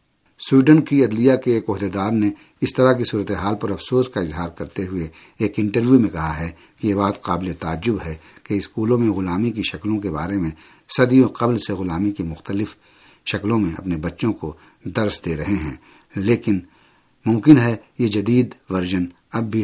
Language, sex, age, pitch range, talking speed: Urdu, male, 60-79, 85-120 Hz, 185 wpm